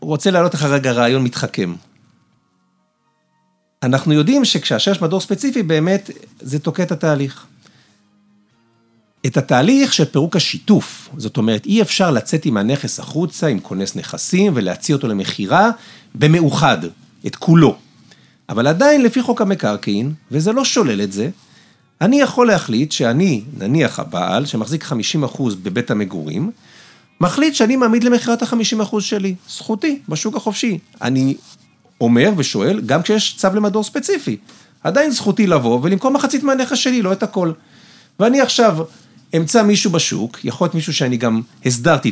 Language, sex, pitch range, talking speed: Hebrew, male, 135-225 Hz, 140 wpm